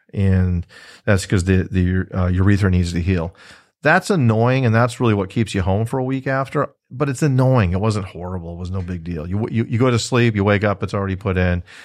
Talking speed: 240 wpm